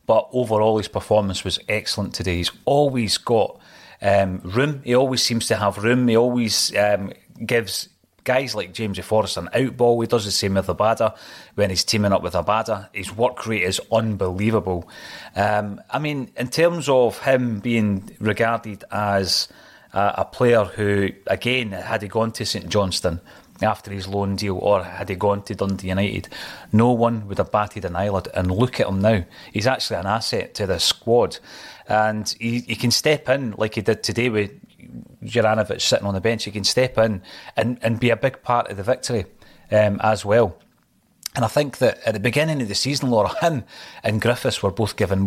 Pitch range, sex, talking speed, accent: 100-120 Hz, male, 190 wpm, British